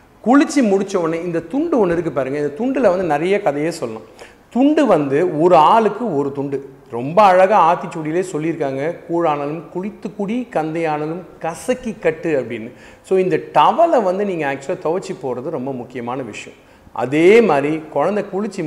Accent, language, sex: native, Tamil, male